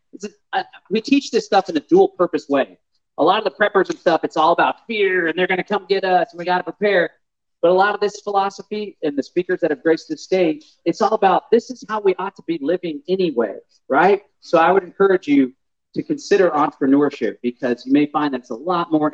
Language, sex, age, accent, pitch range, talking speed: English, male, 40-59, American, 150-210 Hz, 240 wpm